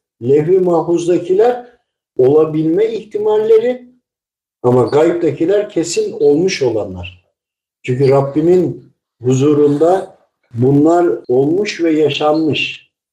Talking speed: 75 wpm